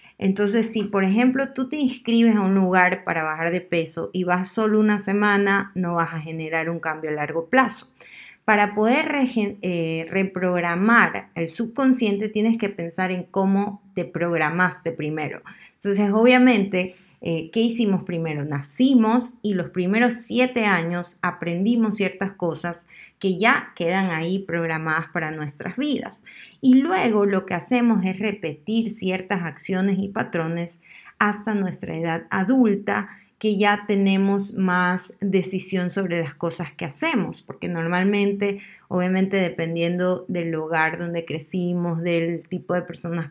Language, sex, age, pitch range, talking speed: Spanish, female, 30-49, 170-215 Hz, 140 wpm